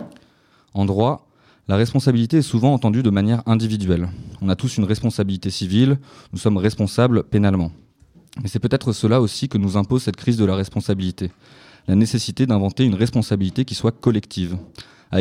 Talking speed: 165 wpm